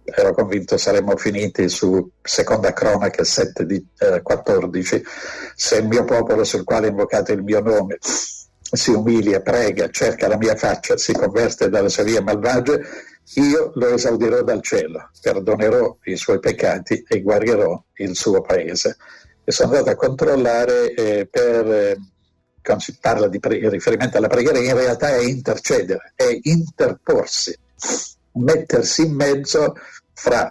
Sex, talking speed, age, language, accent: male, 150 wpm, 60-79, Italian, native